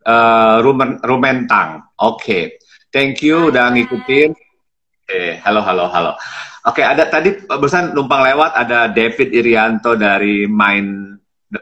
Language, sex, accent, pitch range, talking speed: Indonesian, male, native, 115-140 Hz, 135 wpm